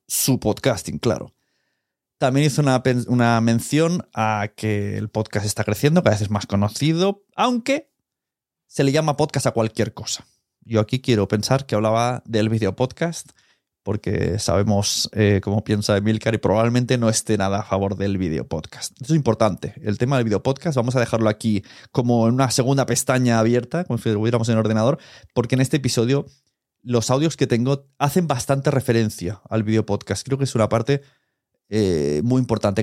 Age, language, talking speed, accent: 20-39, Spanish, 180 wpm, Spanish